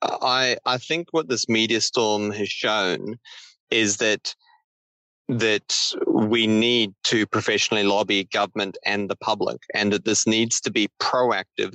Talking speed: 145 wpm